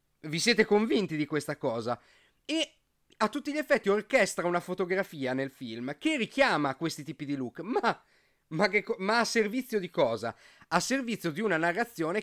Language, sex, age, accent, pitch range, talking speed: Italian, male, 30-49, native, 155-220 Hz, 175 wpm